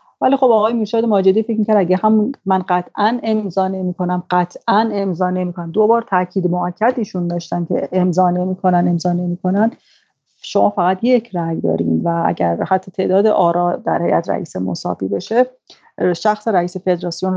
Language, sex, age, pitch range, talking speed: Persian, female, 40-59, 175-220 Hz, 155 wpm